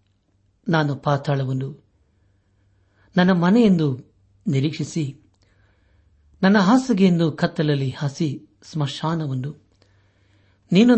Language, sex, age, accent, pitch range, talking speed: Kannada, male, 60-79, native, 100-155 Hz, 60 wpm